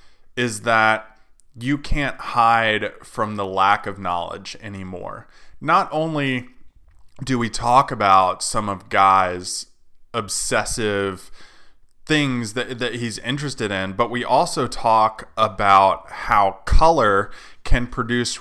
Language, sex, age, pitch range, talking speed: English, male, 20-39, 105-130 Hz, 115 wpm